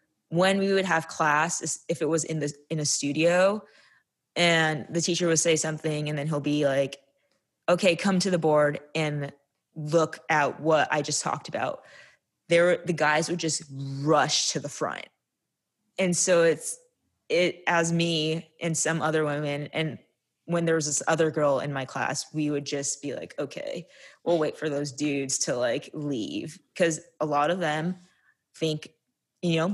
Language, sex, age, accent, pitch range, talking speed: English, female, 20-39, American, 150-175 Hz, 180 wpm